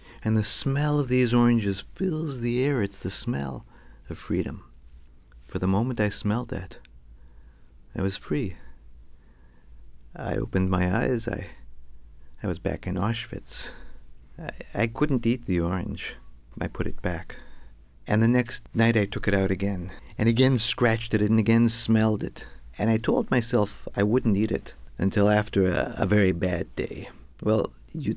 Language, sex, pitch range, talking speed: English, male, 65-110 Hz, 165 wpm